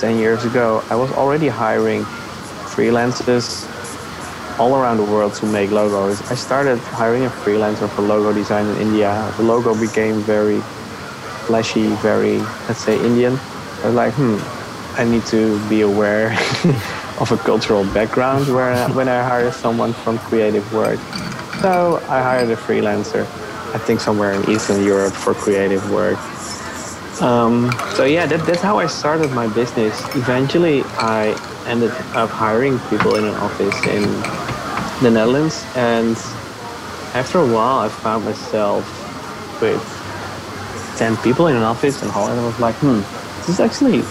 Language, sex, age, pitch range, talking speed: English, male, 20-39, 105-125 Hz, 150 wpm